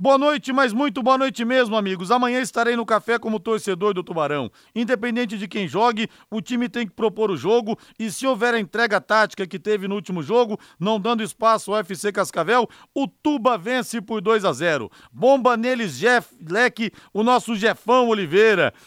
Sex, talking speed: male, 190 wpm